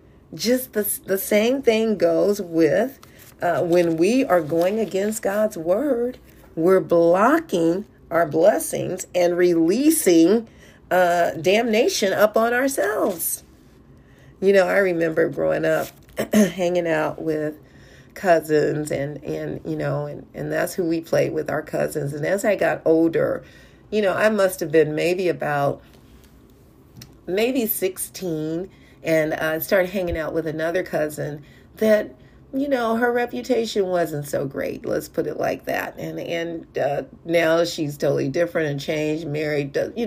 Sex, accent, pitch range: female, American, 160-205 Hz